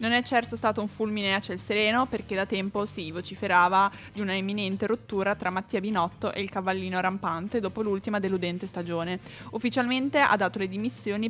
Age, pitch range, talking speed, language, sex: 20-39, 190-225 Hz, 185 wpm, Italian, female